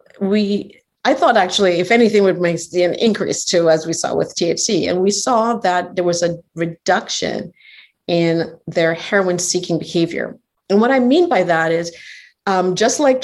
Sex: female